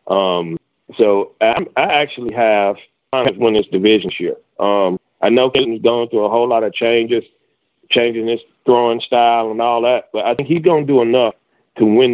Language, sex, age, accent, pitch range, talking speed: English, male, 40-59, American, 115-140 Hz, 195 wpm